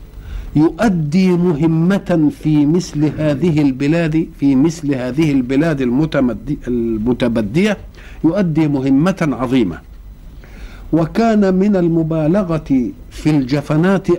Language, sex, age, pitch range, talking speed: Arabic, male, 50-69, 130-185 Hz, 80 wpm